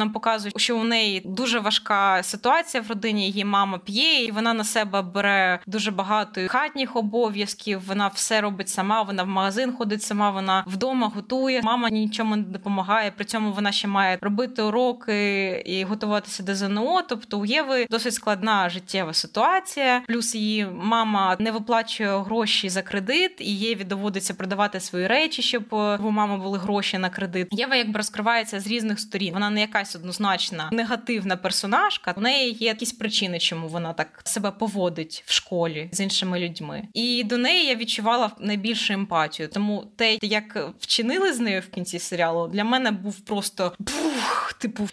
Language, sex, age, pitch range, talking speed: Ukrainian, female, 20-39, 200-235 Hz, 170 wpm